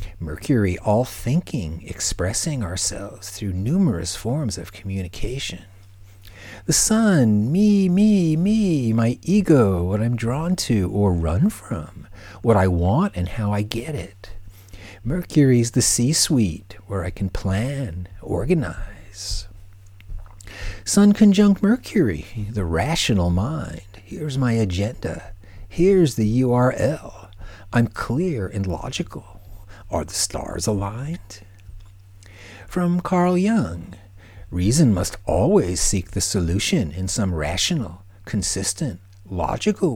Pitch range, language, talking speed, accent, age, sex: 95-120 Hz, English, 110 wpm, American, 60-79, male